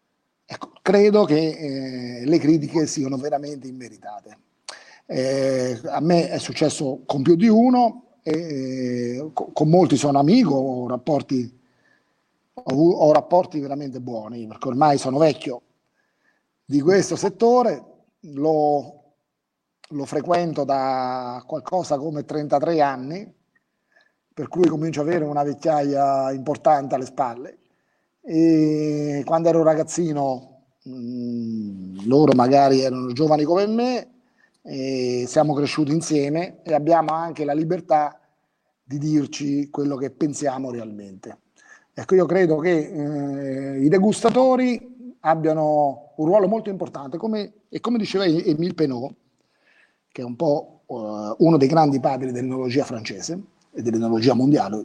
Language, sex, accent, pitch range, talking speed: Italian, male, native, 135-165 Hz, 120 wpm